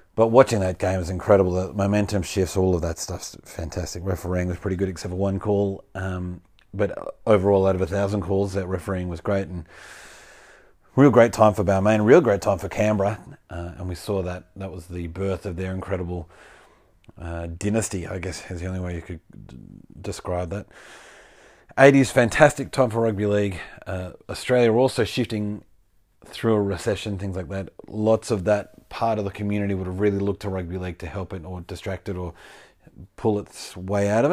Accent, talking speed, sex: Australian, 195 wpm, male